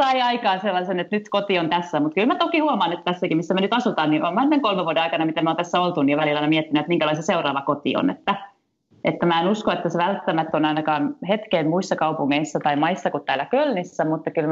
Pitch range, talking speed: 155-195 Hz, 240 wpm